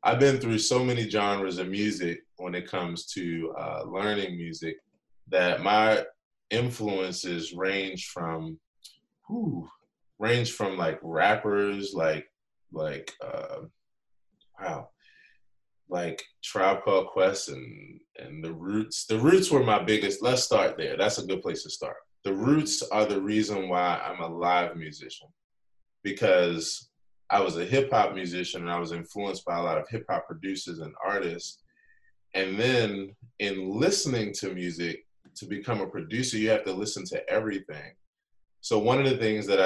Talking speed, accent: 155 wpm, American